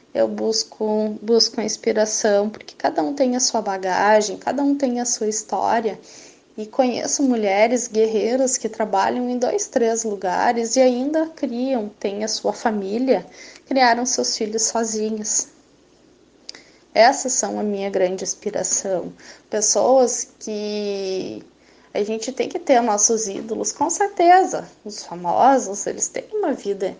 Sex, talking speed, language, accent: female, 140 wpm, Portuguese, Brazilian